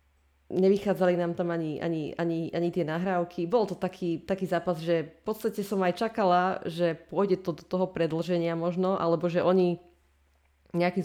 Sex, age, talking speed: female, 20-39, 170 wpm